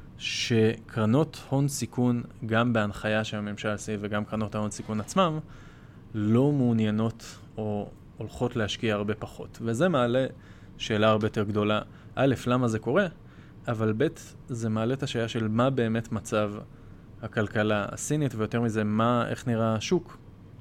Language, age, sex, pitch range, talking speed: Hebrew, 20-39, male, 110-130 Hz, 135 wpm